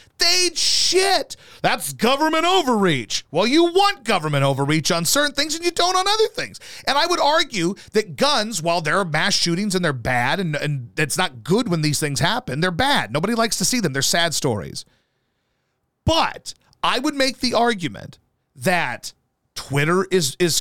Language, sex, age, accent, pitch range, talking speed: English, male, 40-59, American, 155-230 Hz, 180 wpm